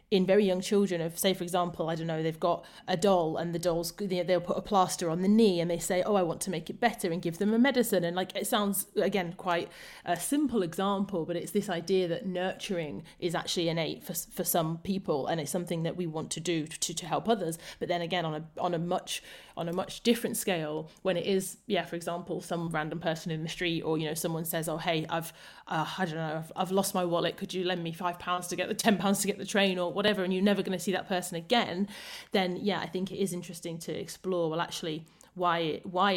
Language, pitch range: English, 170-195 Hz